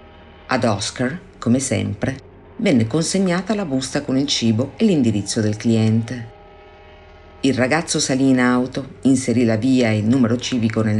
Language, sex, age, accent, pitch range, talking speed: Italian, female, 50-69, native, 110-150 Hz, 155 wpm